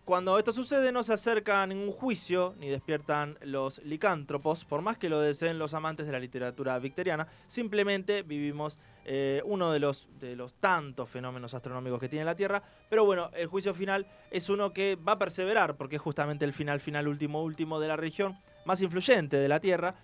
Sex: male